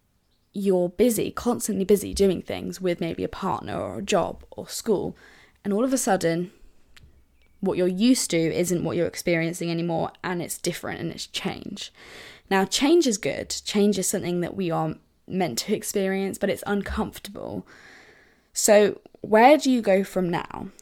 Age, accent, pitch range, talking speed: 10-29, British, 175-215 Hz, 165 wpm